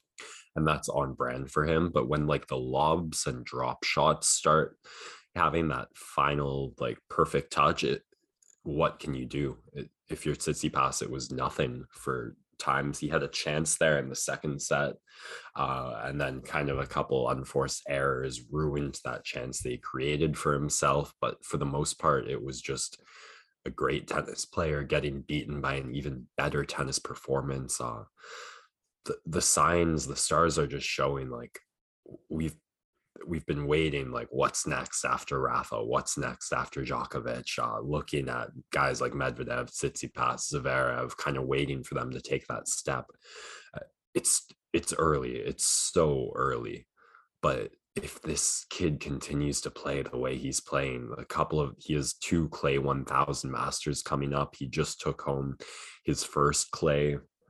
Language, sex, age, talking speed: English, male, 20-39, 165 wpm